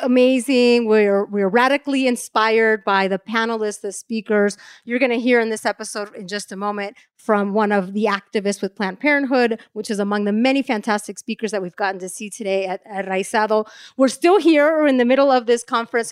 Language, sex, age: English, female, 30-49